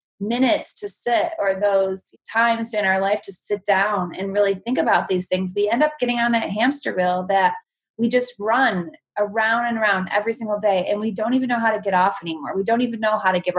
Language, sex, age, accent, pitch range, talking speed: English, female, 20-39, American, 195-250 Hz, 235 wpm